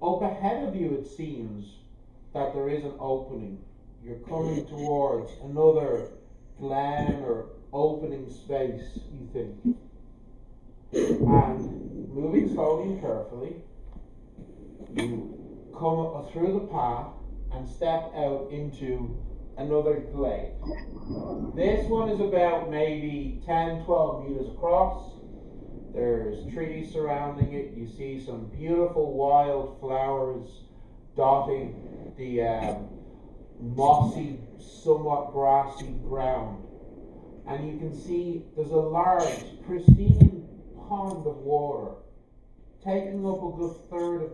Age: 40-59